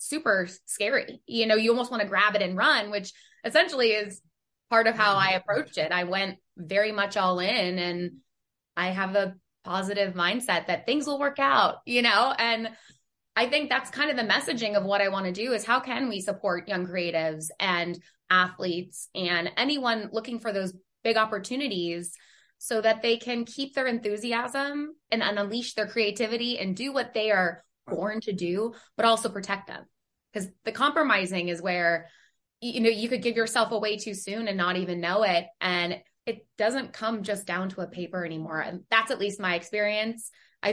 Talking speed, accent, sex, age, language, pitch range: 190 wpm, American, female, 20-39, English, 185-230 Hz